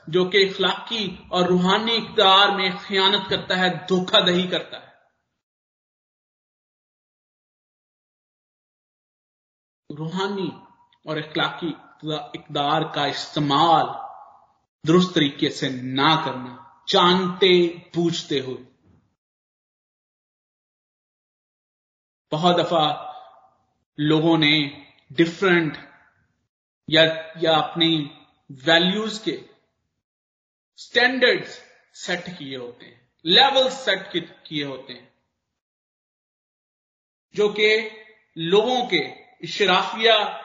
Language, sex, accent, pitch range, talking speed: Hindi, male, native, 155-220 Hz, 75 wpm